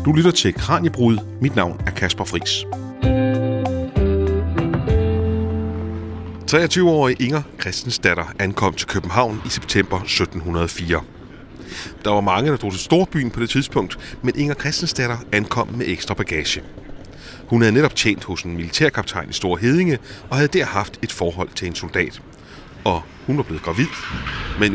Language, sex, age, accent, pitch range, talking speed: Danish, male, 30-49, native, 95-125 Hz, 150 wpm